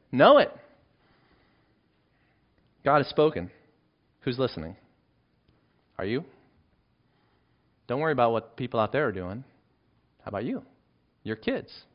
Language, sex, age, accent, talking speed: English, male, 30-49, American, 115 wpm